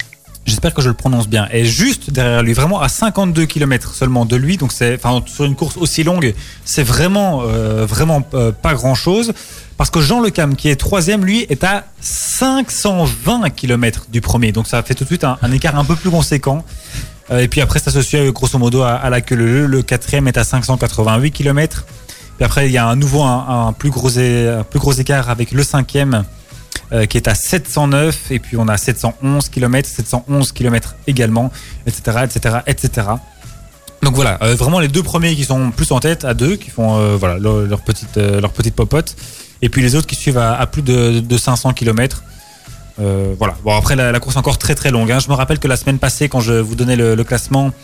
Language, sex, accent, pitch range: French, male, French, 115-145 Hz